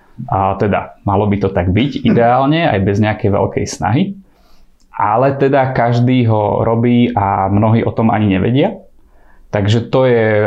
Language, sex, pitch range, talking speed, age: Slovak, male, 105-120 Hz, 155 wpm, 20-39